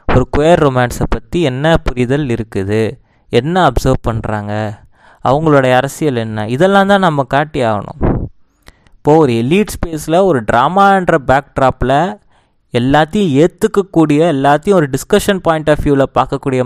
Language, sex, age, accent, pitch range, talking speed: Tamil, male, 20-39, native, 130-170 Hz, 125 wpm